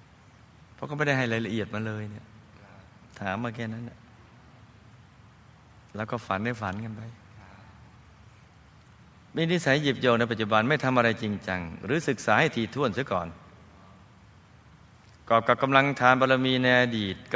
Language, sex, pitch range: Thai, male, 105-135 Hz